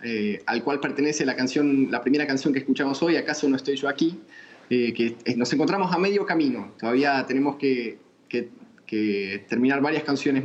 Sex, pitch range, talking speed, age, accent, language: male, 130-170 Hz, 185 wpm, 20-39, Argentinian, Spanish